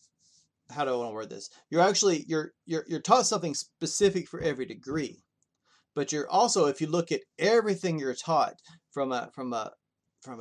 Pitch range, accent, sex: 130-165 Hz, American, male